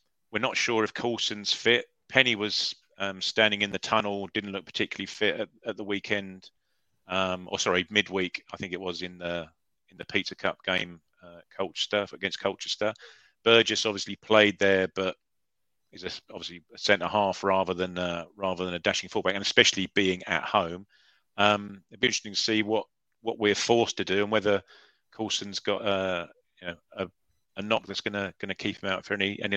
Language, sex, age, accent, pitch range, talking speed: English, male, 40-59, British, 95-110 Hz, 200 wpm